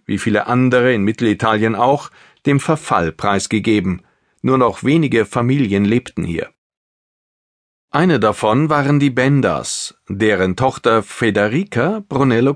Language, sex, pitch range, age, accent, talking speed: German, male, 105-140 Hz, 40-59, German, 115 wpm